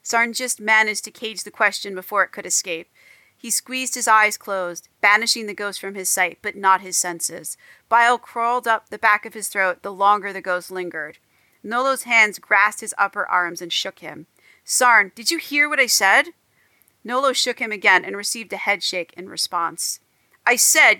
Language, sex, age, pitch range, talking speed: English, female, 40-59, 190-235 Hz, 190 wpm